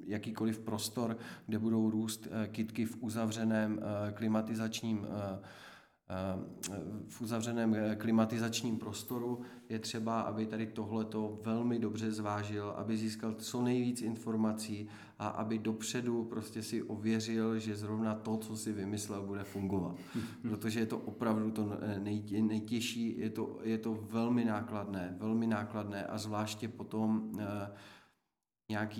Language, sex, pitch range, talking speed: Czech, male, 105-115 Hz, 120 wpm